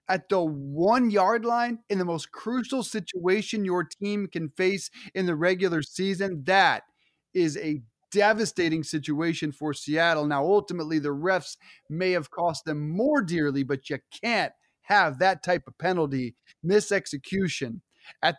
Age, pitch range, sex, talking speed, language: 30-49, 160-200 Hz, male, 145 wpm, English